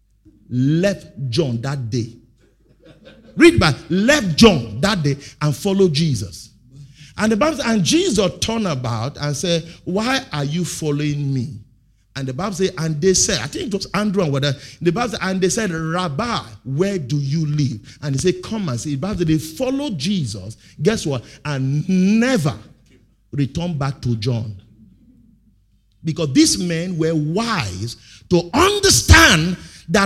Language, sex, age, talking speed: English, male, 50-69, 160 wpm